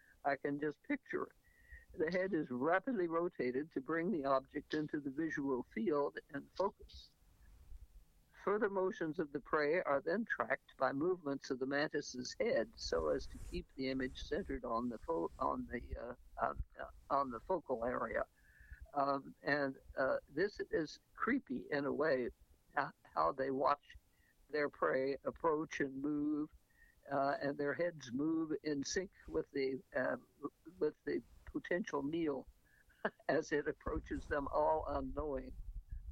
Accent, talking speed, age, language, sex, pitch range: American, 150 wpm, 60-79, English, male, 130-175 Hz